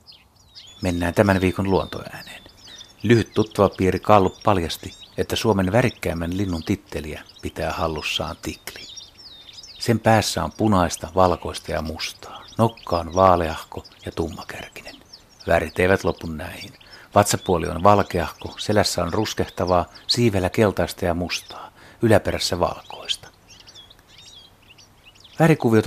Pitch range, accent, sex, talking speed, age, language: 85-100 Hz, native, male, 105 wpm, 60-79, Finnish